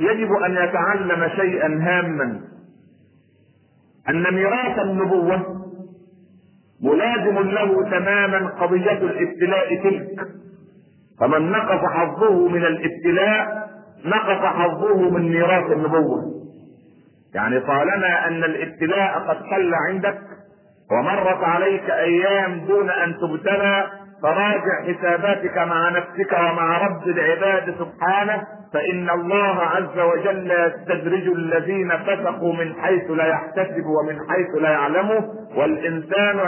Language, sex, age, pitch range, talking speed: Arabic, male, 50-69, 170-200 Hz, 100 wpm